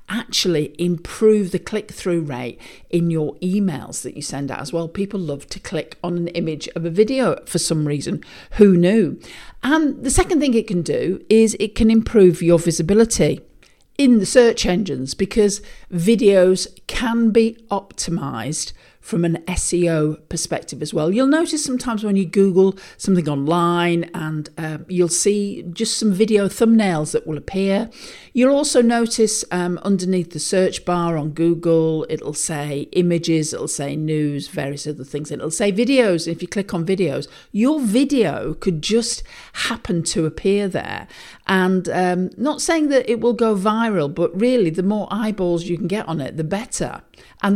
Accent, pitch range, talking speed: British, 160-215 Hz, 170 wpm